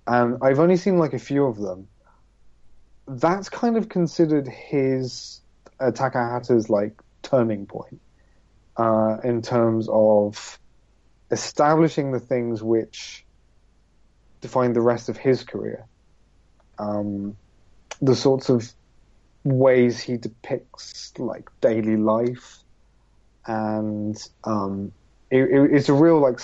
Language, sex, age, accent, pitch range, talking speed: English, male, 30-49, British, 100-130 Hz, 120 wpm